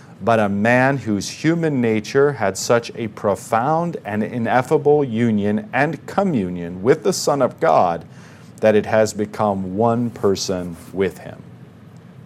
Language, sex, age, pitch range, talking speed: English, male, 40-59, 100-130 Hz, 135 wpm